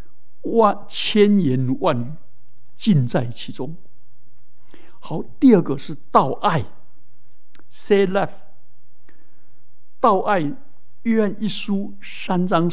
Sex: male